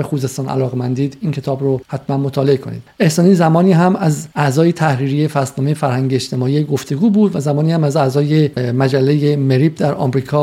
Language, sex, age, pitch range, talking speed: Persian, male, 50-69, 140-165 Hz, 165 wpm